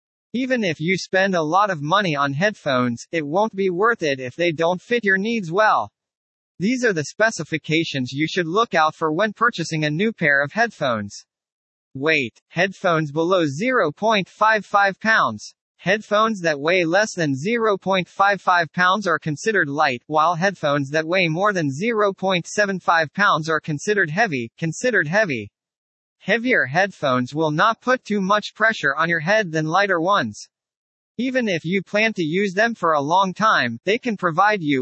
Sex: male